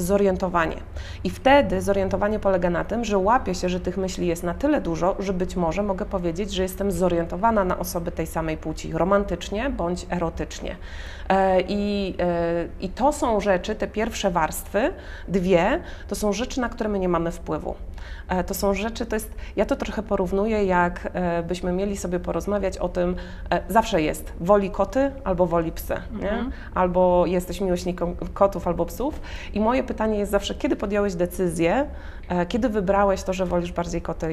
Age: 30-49